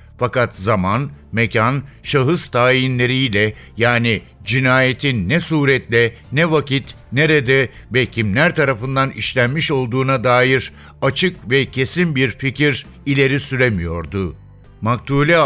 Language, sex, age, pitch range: Turkish, male, 60-79, 120-140 Hz